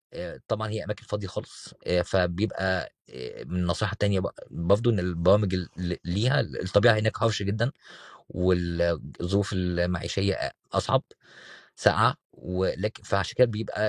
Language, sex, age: Arabic, male, 20-39